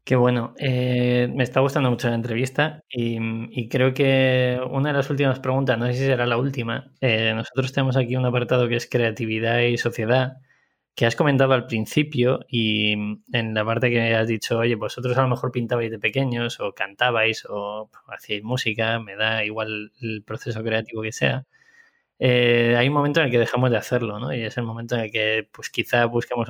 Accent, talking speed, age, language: Spanish, 205 wpm, 20-39, Spanish